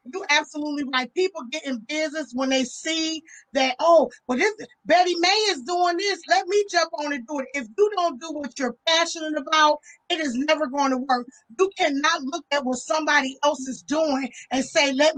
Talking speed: 210 wpm